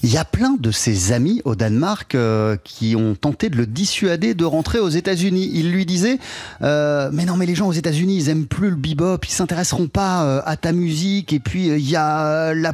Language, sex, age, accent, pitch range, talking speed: French, male, 30-49, French, 125-180 Hz, 230 wpm